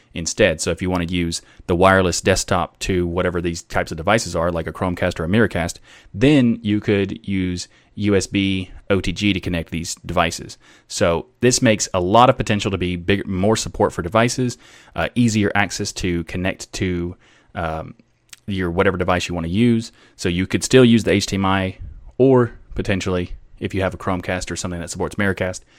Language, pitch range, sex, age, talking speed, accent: English, 90-105 Hz, male, 30-49, 185 wpm, American